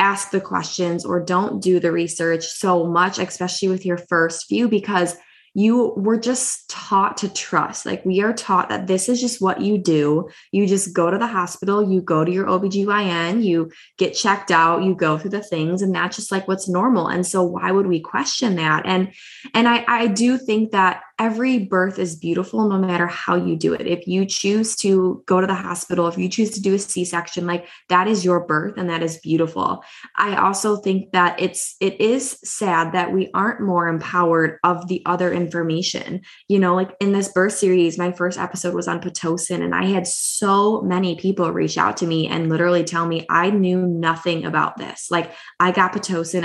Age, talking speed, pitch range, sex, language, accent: 20-39, 205 wpm, 170-195 Hz, female, English, American